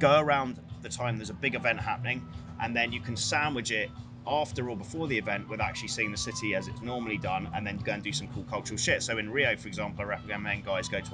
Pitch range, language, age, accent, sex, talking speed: 105-125 Hz, English, 30-49, British, male, 260 wpm